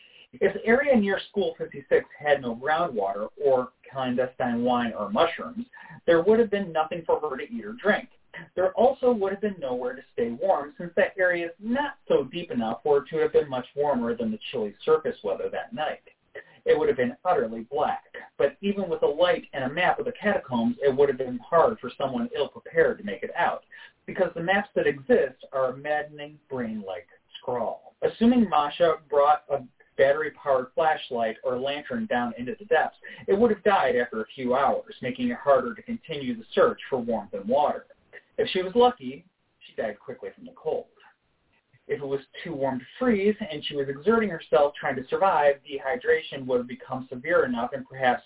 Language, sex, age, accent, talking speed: English, male, 40-59, American, 200 wpm